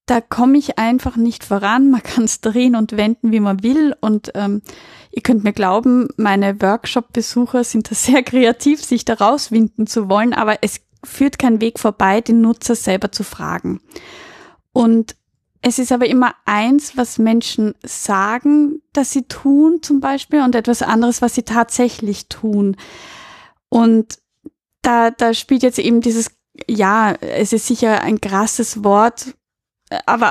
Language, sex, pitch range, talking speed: German, female, 210-245 Hz, 155 wpm